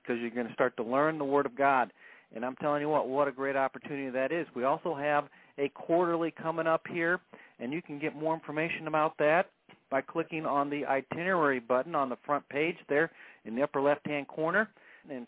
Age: 40-59